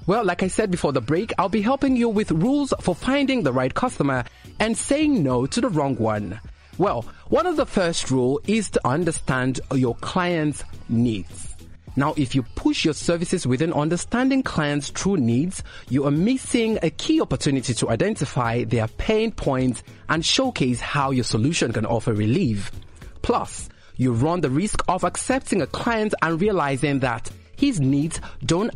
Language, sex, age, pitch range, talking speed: English, male, 30-49, 120-185 Hz, 170 wpm